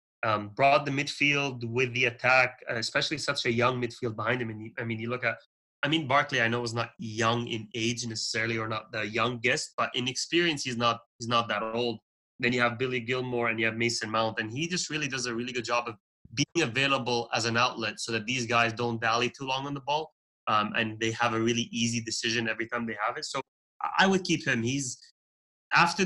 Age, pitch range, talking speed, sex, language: 20-39, 115-135 Hz, 230 wpm, male, English